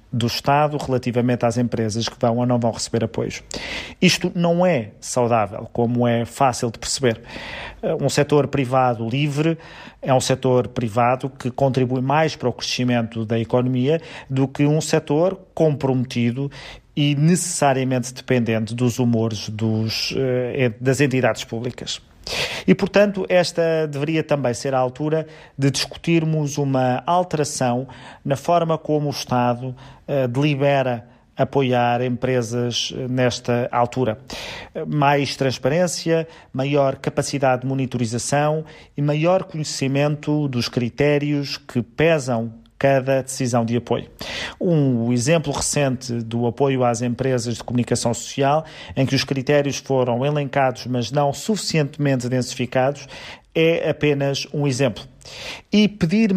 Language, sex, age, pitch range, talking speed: Portuguese, male, 40-59, 120-150 Hz, 120 wpm